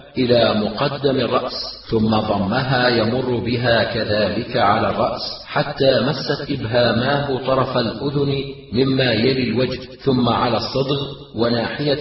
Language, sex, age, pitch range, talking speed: Arabic, male, 40-59, 125-140 Hz, 110 wpm